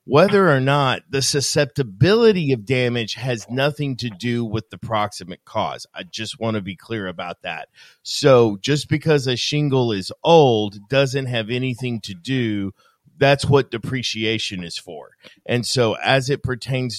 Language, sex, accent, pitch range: English, male, American, 110-140 Hz